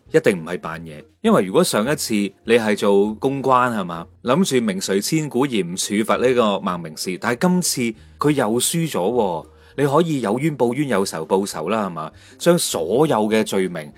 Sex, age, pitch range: male, 30-49, 100-140 Hz